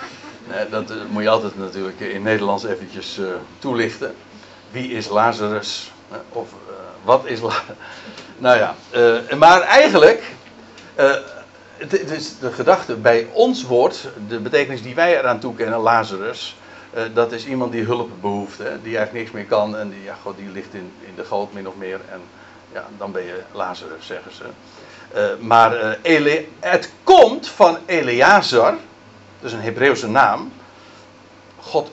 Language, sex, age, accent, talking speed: Dutch, male, 60-79, Dutch, 135 wpm